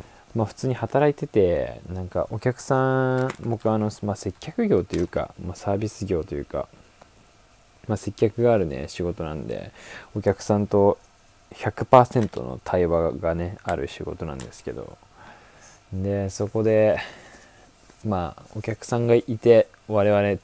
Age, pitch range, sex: 20-39, 90-110 Hz, male